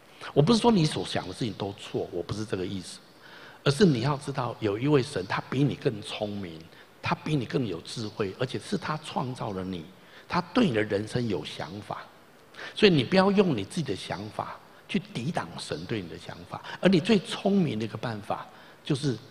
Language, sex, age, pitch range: Chinese, male, 60-79, 100-145 Hz